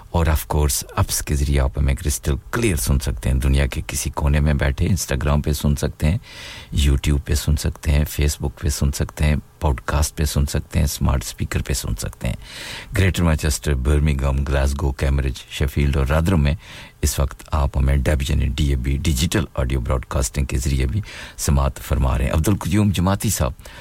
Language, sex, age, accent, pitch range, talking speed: English, male, 50-69, Indian, 70-85 Hz, 155 wpm